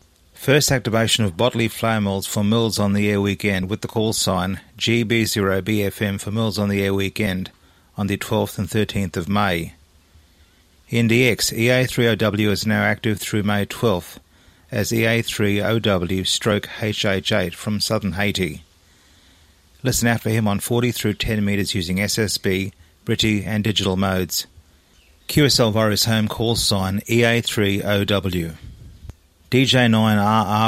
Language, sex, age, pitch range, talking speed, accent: English, male, 30-49, 95-110 Hz, 130 wpm, Australian